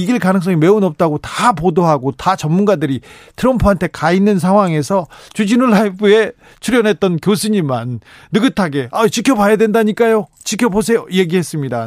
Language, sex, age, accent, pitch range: Korean, male, 40-59, native, 140-205 Hz